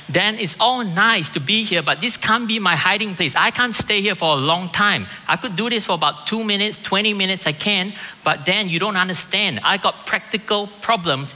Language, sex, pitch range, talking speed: English, male, 150-205 Hz, 225 wpm